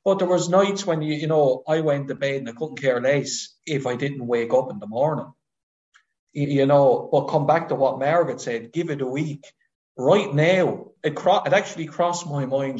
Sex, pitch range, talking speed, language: male, 130-175 Hz, 220 wpm, English